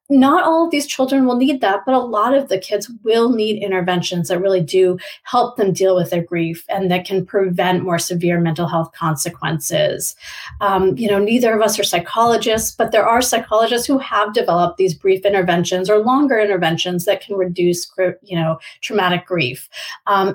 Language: English